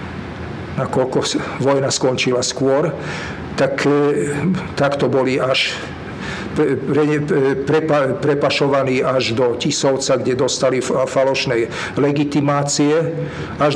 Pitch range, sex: 130-145 Hz, male